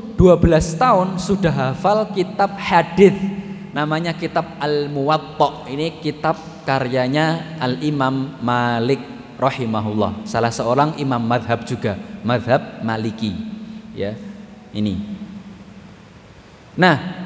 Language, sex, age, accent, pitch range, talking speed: Indonesian, male, 20-39, native, 130-190 Hz, 95 wpm